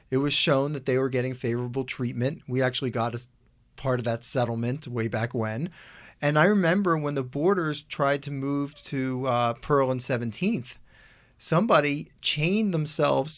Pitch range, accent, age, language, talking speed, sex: 130-165 Hz, American, 40-59, English, 165 wpm, male